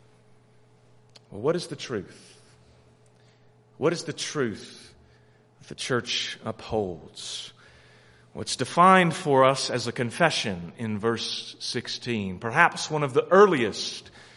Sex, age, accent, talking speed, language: male, 40-59, American, 115 wpm, English